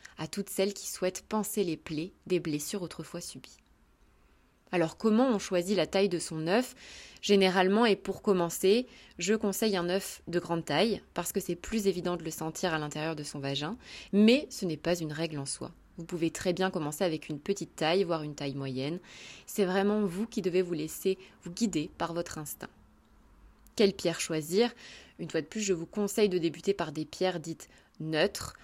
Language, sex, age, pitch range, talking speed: French, female, 20-39, 160-200 Hz, 200 wpm